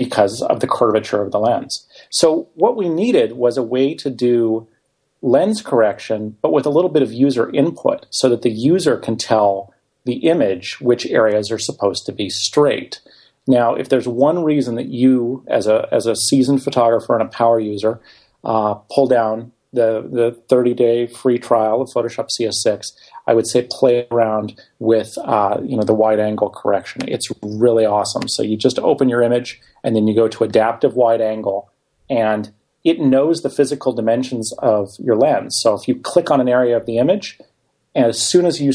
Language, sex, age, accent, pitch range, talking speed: English, male, 40-59, American, 110-130 Hz, 190 wpm